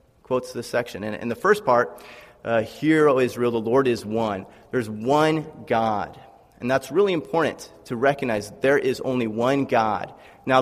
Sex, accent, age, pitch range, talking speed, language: male, American, 30-49, 115-150 Hz, 175 wpm, English